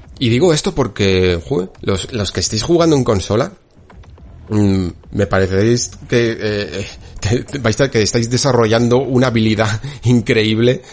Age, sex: 30-49, male